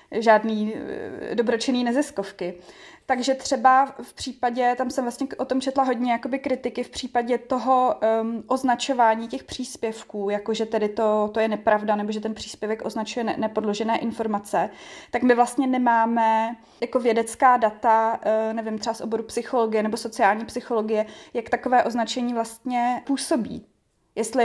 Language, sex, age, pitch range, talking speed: Czech, female, 20-39, 215-245 Hz, 135 wpm